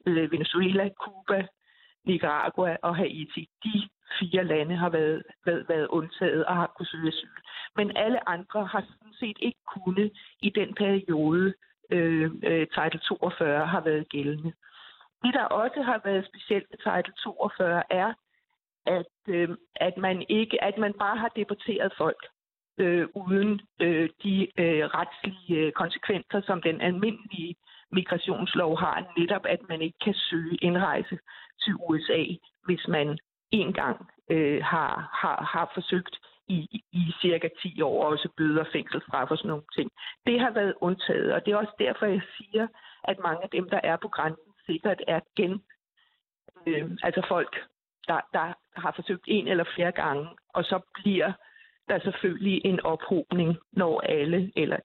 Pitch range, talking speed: 165-205 Hz, 160 wpm